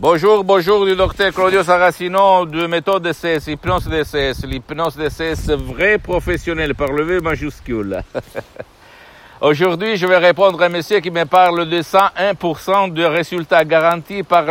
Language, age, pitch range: Italian, 60-79, 130-170 Hz